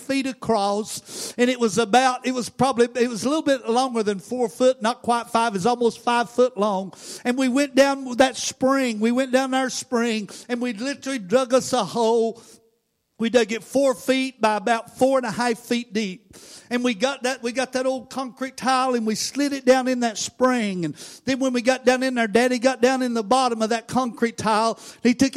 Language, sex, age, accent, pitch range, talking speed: English, male, 50-69, American, 225-255 Hz, 225 wpm